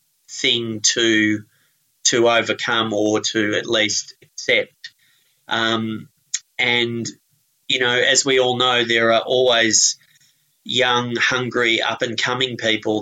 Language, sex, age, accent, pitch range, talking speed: English, male, 30-49, Australian, 115-135 Hz, 110 wpm